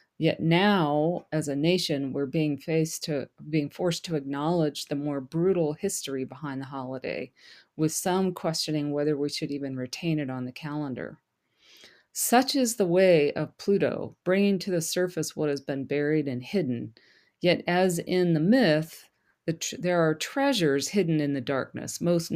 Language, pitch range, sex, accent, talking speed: English, 140-175 Hz, female, American, 170 wpm